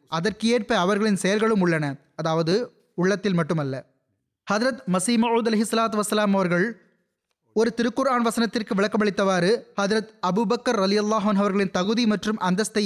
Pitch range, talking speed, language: 180-225 Hz, 105 wpm, Tamil